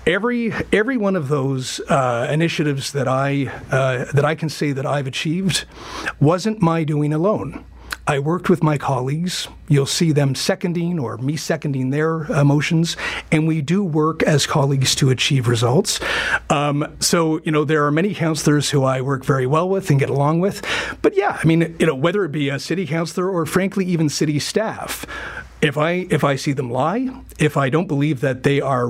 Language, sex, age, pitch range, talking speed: English, male, 40-59, 140-170 Hz, 195 wpm